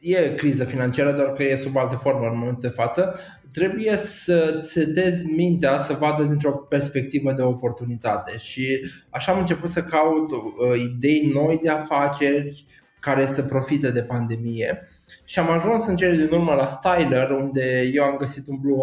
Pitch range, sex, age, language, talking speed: 125-155 Hz, male, 20-39, Romanian, 170 wpm